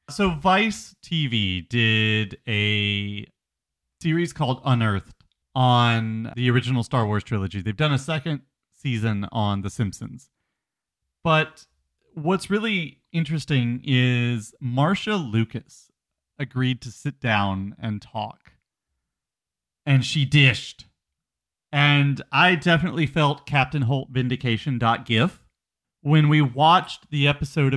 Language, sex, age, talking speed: English, male, 30-49, 110 wpm